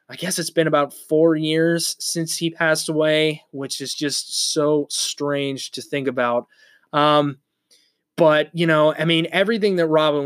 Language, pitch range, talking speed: English, 150-180 Hz, 165 wpm